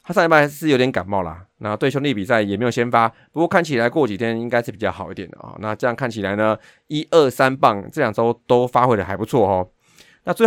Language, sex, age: Chinese, male, 30-49